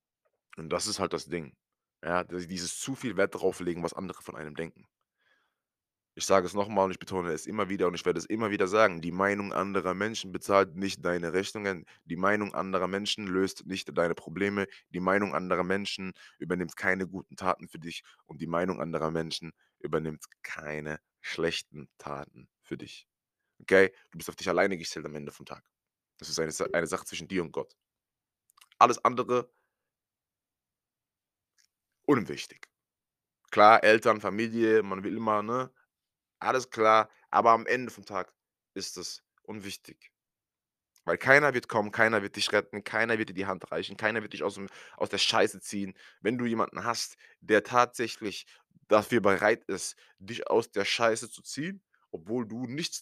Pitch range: 90-110 Hz